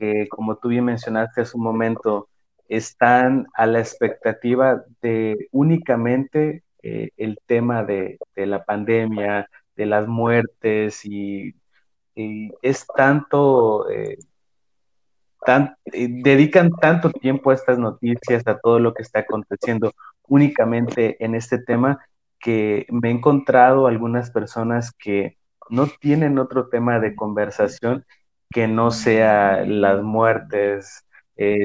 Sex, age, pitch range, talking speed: male, 30-49, 105-125 Hz, 125 wpm